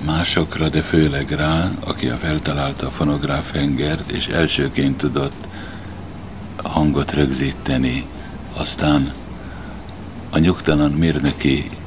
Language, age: Hungarian, 60-79